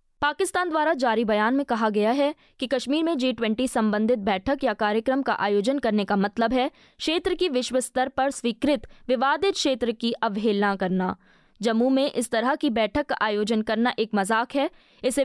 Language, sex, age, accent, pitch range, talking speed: Hindi, female, 20-39, native, 220-275 Hz, 175 wpm